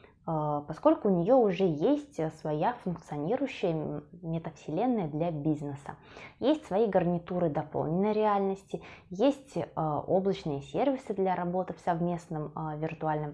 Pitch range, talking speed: 155-215 Hz, 105 wpm